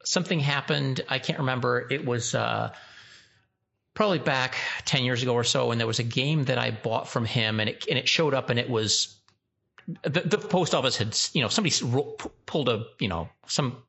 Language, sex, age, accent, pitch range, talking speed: English, male, 40-59, American, 105-135 Hz, 205 wpm